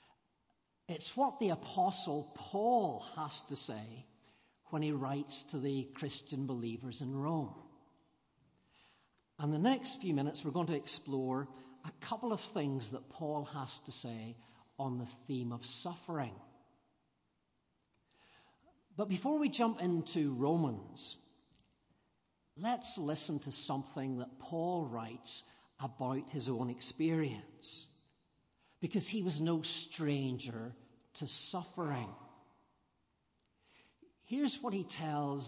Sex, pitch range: male, 130-165 Hz